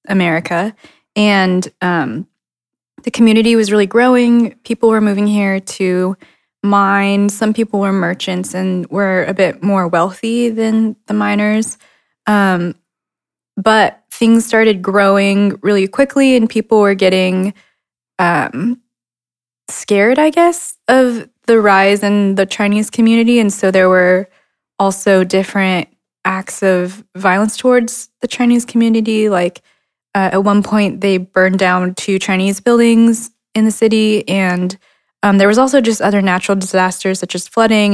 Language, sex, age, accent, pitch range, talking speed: English, female, 20-39, American, 190-220 Hz, 140 wpm